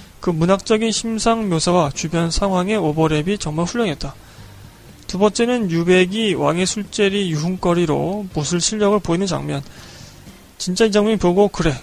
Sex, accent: male, native